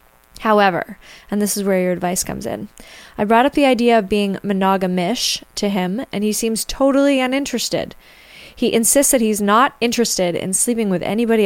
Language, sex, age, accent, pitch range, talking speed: English, female, 20-39, American, 190-230 Hz, 180 wpm